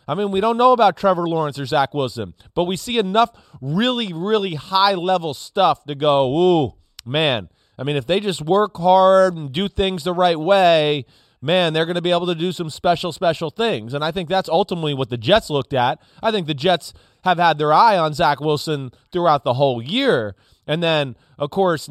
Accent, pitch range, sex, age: American, 135-180 Hz, male, 30-49